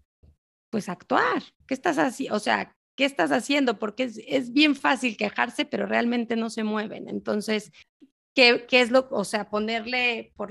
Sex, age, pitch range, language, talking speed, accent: female, 30-49, 190-240 Hz, English, 175 wpm, Mexican